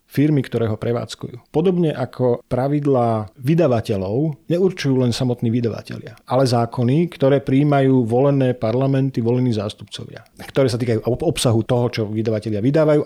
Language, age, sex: Slovak, 40-59, male